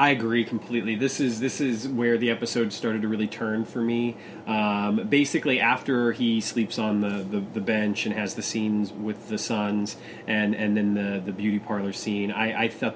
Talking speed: 205 wpm